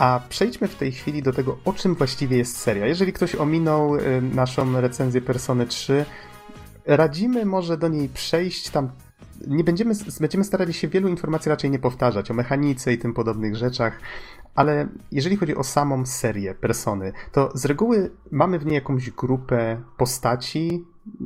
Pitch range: 115-145 Hz